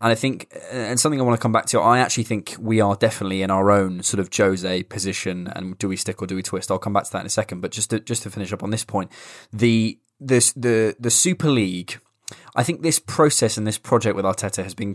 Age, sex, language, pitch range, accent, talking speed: 20-39, male, English, 100-120 Hz, British, 270 wpm